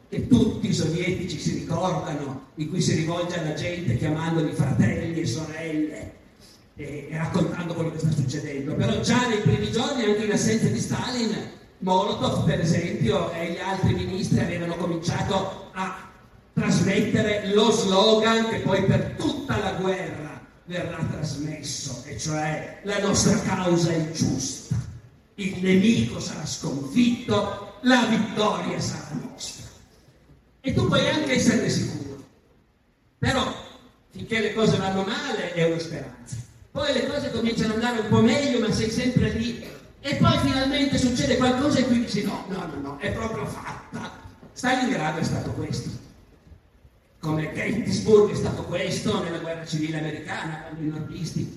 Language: Italian